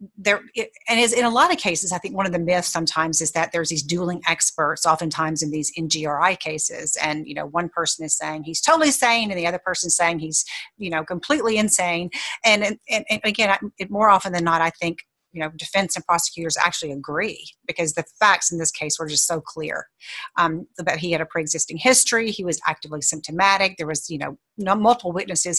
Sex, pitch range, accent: female, 160-200 Hz, American